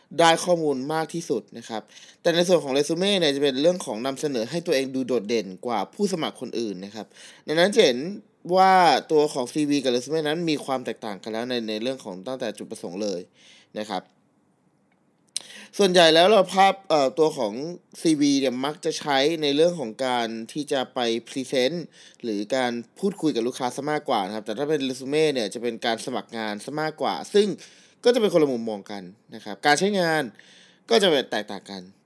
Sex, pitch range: male, 120-170 Hz